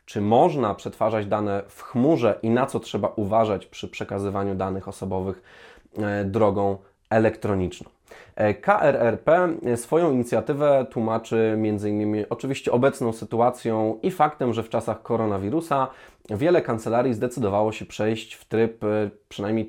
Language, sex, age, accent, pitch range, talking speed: Polish, male, 20-39, native, 105-130 Hz, 120 wpm